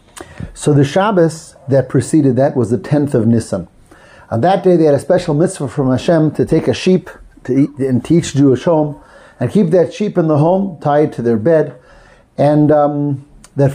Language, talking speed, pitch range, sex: English, 195 wpm, 130-170 Hz, male